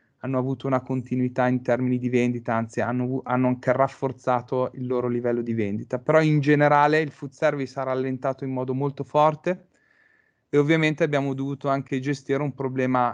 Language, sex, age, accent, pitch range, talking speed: Italian, male, 30-49, native, 125-140 Hz, 175 wpm